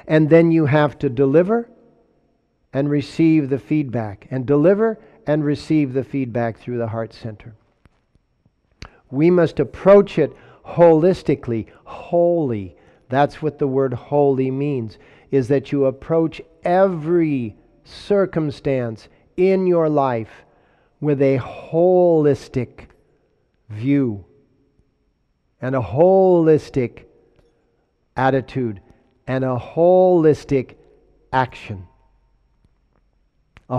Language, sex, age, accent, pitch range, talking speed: English, male, 50-69, American, 125-165 Hz, 95 wpm